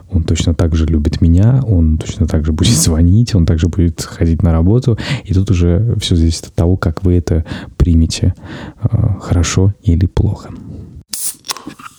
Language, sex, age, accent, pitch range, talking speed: Russian, male, 20-39, native, 85-100 Hz, 160 wpm